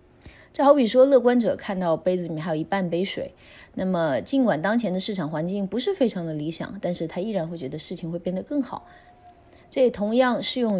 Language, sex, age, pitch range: Chinese, female, 20-39, 165-220 Hz